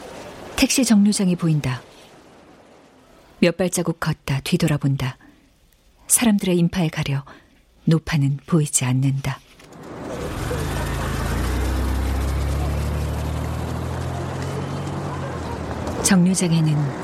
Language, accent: Korean, native